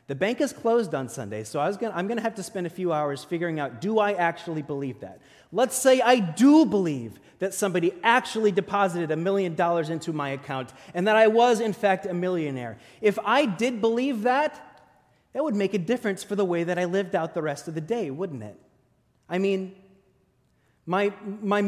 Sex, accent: male, American